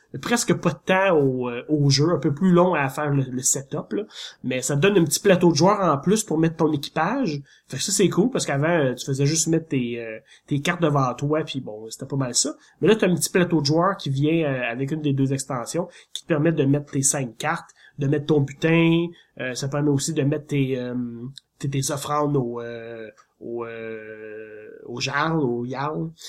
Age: 30-49